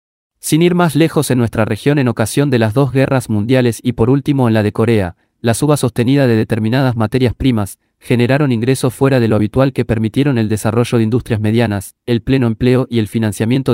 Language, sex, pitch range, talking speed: Spanish, male, 110-130 Hz, 205 wpm